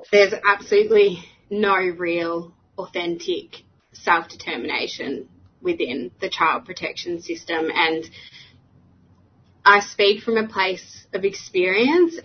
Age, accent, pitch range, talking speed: 20-39, Australian, 170-200 Hz, 95 wpm